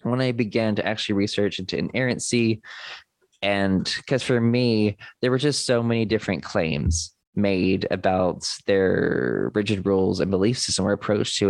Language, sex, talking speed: English, male, 155 wpm